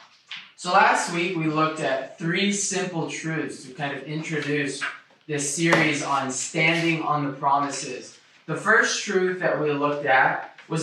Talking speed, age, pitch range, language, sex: 155 wpm, 20-39, 150-190 Hz, English, male